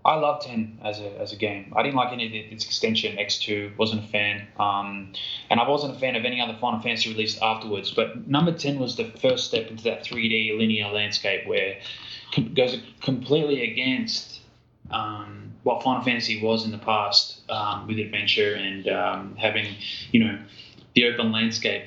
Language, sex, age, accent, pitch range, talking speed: English, male, 10-29, Australian, 105-125 Hz, 190 wpm